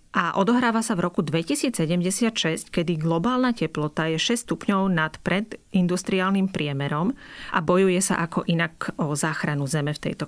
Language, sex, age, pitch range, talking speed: Slovak, female, 30-49, 160-215 Hz, 145 wpm